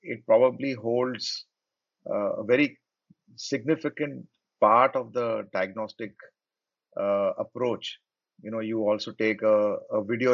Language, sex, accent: English, male, Indian